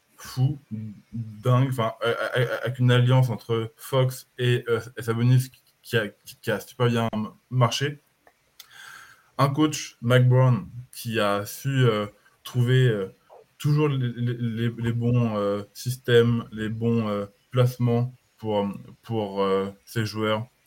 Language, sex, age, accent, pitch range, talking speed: French, male, 20-39, French, 105-125 Hz, 130 wpm